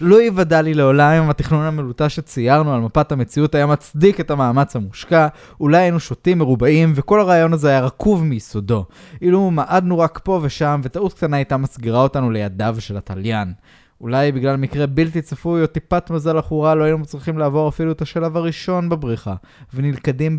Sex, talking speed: male, 170 wpm